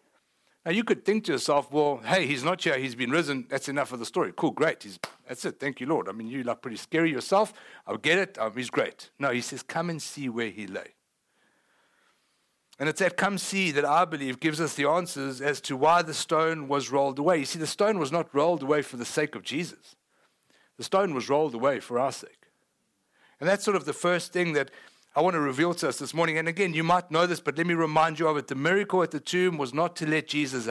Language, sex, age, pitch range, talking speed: English, male, 60-79, 135-170 Hz, 250 wpm